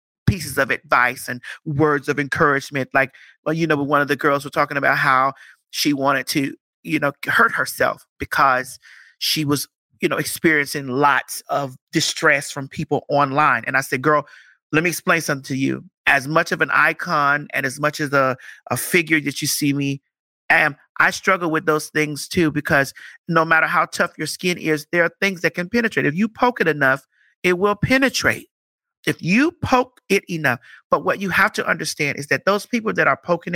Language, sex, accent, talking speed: English, male, American, 200 wpm